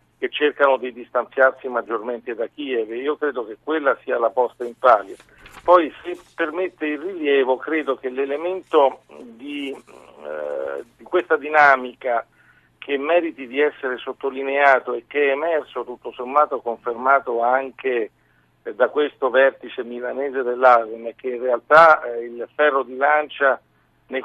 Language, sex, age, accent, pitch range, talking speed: Italian, male, 50-69, native, 125-150 Hz, 145 wpm